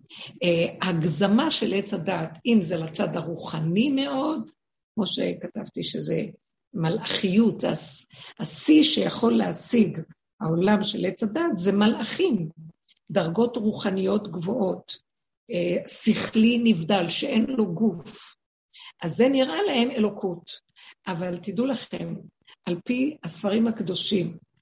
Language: Hebrew